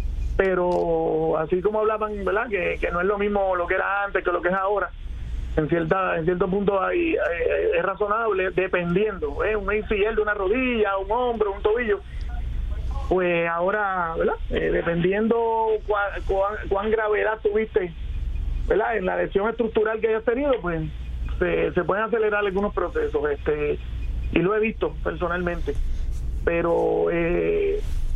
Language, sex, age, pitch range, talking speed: English, male, 40-59, 165-215 Hz, 160 wpm